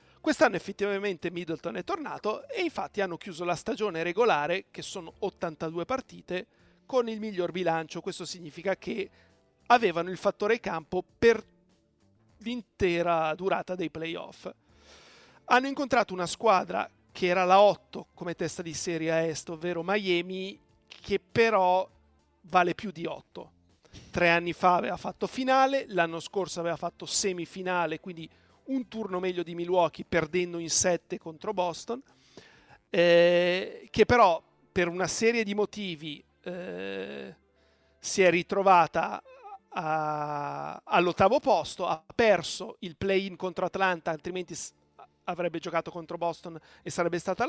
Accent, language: native, Italian